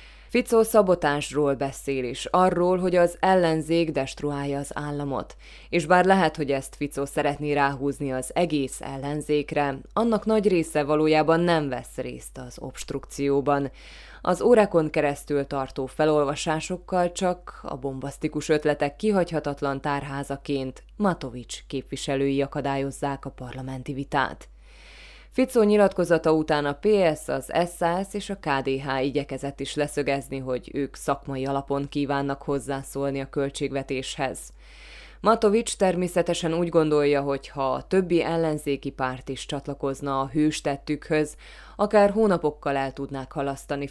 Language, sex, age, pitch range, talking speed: Hungarian, female, 20-39, 140-165 Hz, 120 wpm